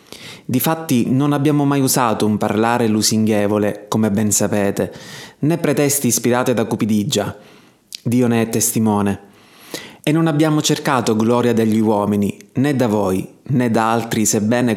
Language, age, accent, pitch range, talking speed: Italian, 20-39, native, 110-130 Hz, 140 wpm